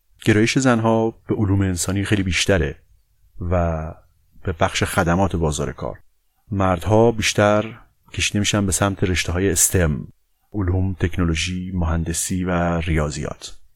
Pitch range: 85-105 Hz